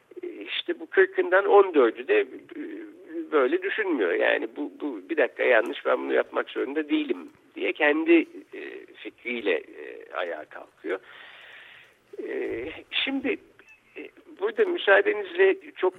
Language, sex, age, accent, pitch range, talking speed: Turkish, male, 60-79, native, 305-410 Hz, 100 wpm